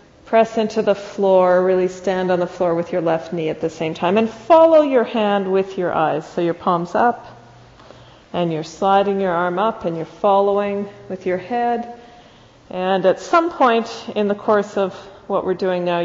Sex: female